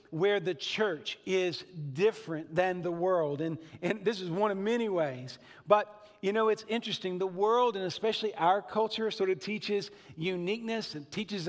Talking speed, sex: 170 wpm, male